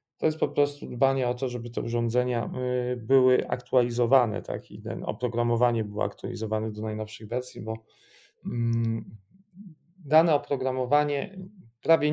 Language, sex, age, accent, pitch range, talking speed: Polish, male, 40-59, native, 120-140 Hz, 125 wpm